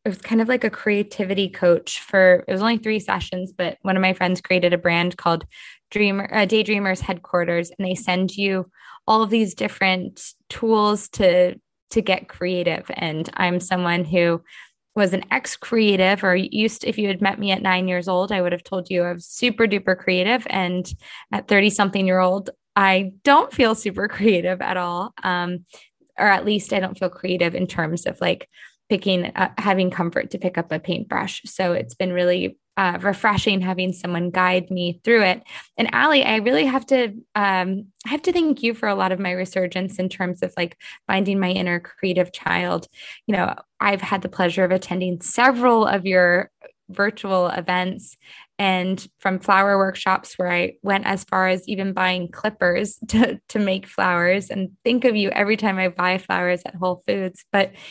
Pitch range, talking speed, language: 180-205 Hz, 190 wpm, English